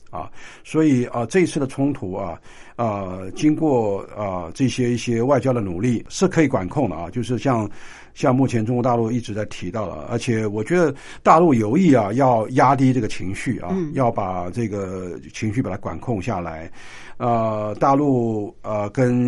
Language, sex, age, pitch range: Chinese, male, 60-79, 100-135 Hz